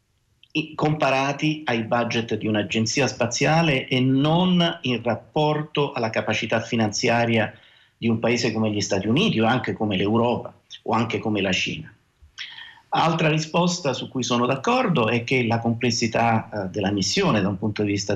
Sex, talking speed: male, 150 wpm